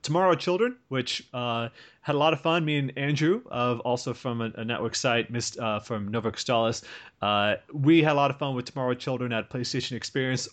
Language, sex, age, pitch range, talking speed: English, male, 30-49, 120-155 Hz, 205 wpm